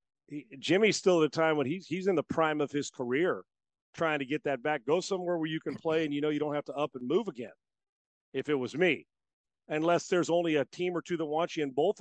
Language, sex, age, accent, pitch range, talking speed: English, male, 40-59, American, 145-175 Hz, 265 wpm